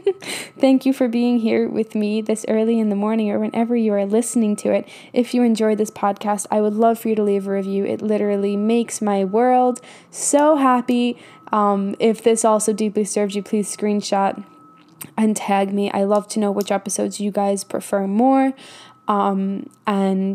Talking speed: 190 wpm